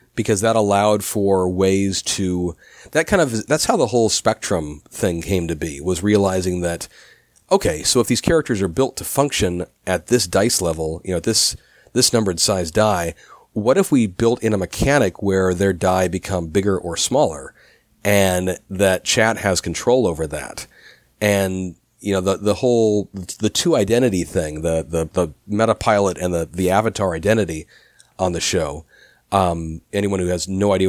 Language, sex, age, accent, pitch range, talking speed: English, male, 40-59, American, 90-110 Hz, 175 wpm